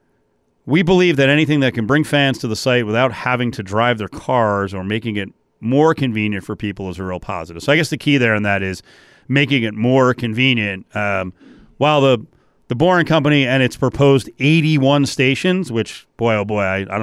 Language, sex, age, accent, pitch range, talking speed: English, male, 30-49, American, 110-145 Hz, 210 wpm